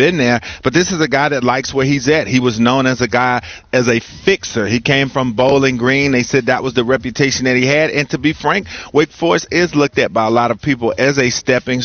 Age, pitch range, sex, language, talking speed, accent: 40-59, 120-145 Hz, male, English, 265 wpm, American